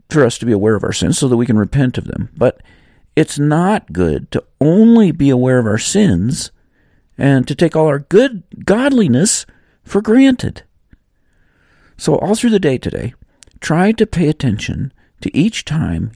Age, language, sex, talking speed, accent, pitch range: 50-69, English, male, 180 wpm, American, 115-160 Hz